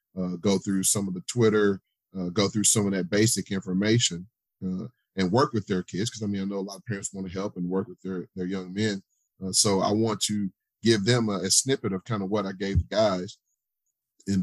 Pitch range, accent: 95-105 Hz, American